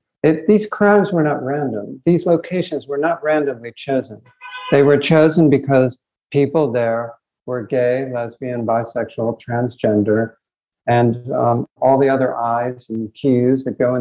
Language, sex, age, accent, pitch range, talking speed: English, male, 50-69, American, 120-155 Hz, 140 wpm